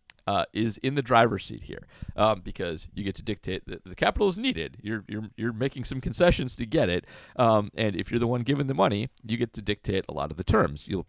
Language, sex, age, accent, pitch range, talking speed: English, male, 40-59, American, 95-130 Hz, 250 wpm